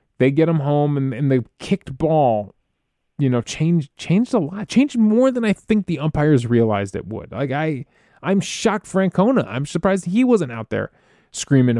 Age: 20-39